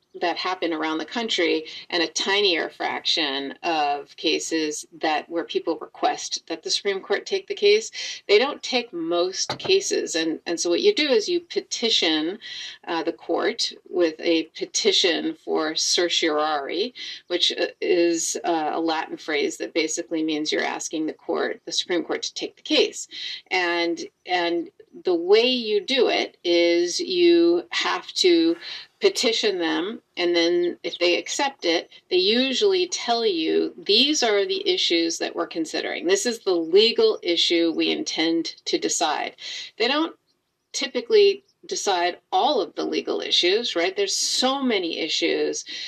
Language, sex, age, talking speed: English, female, 40-59, 155 wpm